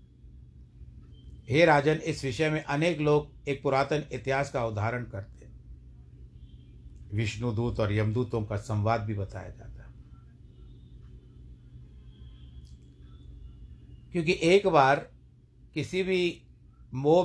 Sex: male